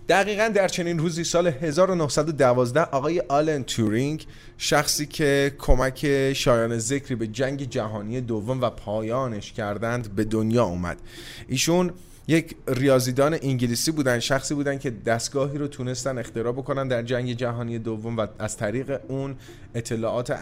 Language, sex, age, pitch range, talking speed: Persian, male, 30-49, 115-150 Hz, 135 wpm